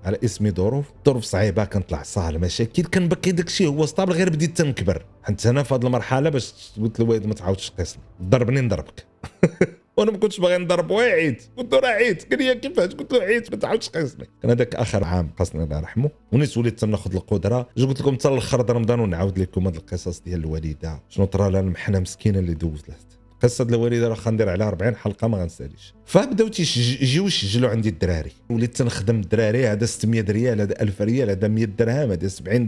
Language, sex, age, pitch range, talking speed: Arabic, male, 40-59, 100-145 Hz, 195 wpm